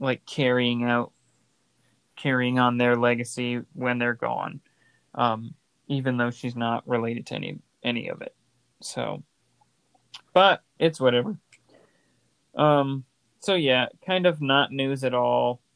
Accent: American